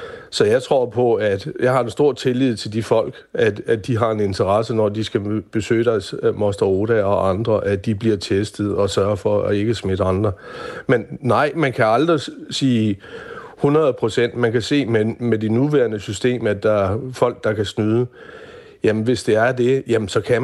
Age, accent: 60-79, native